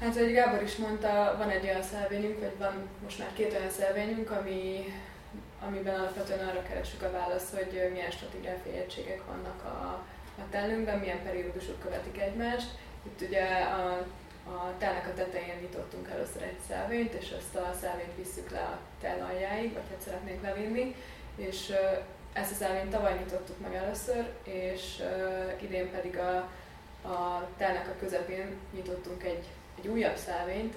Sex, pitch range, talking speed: female, 180-200 Hz, 155 wpm